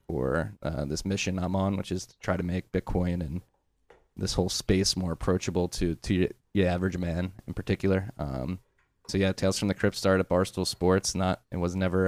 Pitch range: 90-100 Hz